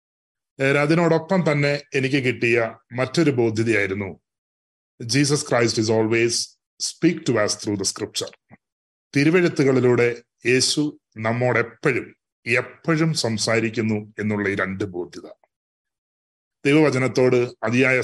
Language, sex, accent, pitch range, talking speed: Malayalam, male, native, 110-135 Hz, 85 wpm